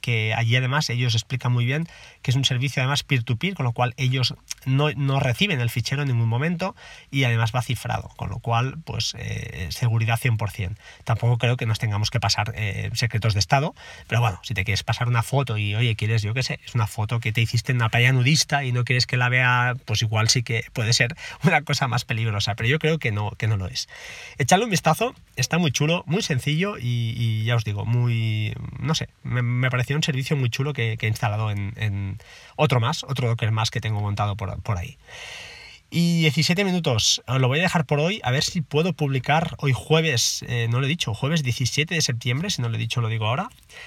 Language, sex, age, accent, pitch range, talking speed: Spanish, male, 20-39, Spanish, 115-145 Hz, 235 wpm